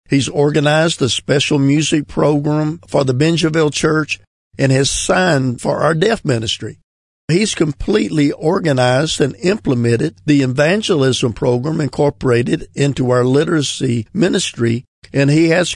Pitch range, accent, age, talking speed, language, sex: 125-155 Hz, American, 50-69, 125 wpm, English, male